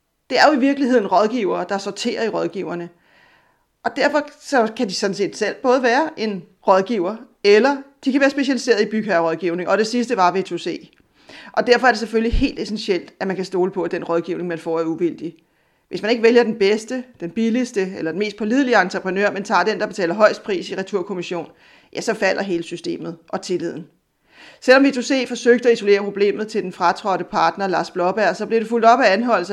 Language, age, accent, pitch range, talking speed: Danish, 40-59, native, 180-225 Hz, 210 wpm